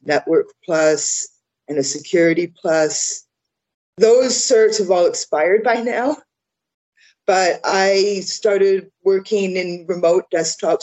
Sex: female